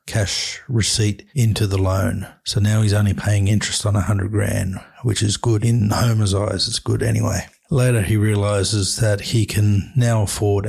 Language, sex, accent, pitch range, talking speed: English, male, Australian, 100-110 Hz, 180 wpm